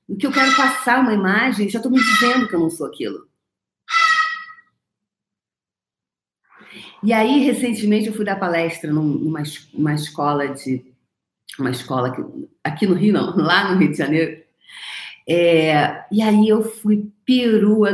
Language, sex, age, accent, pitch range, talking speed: Portuguese, female, 40-59, Brazilian, 165-220 Hz, 150 wpm